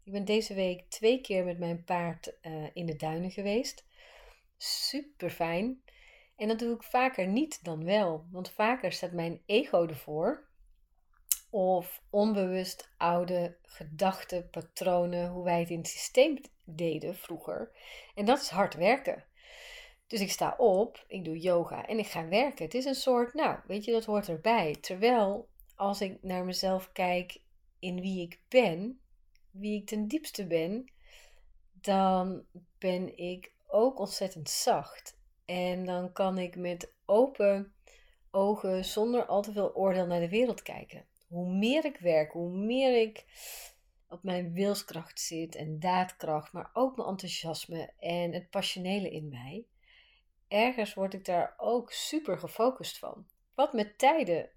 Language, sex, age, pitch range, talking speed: Dutch, female, 30-49, 175-220 Hz, 155 wpm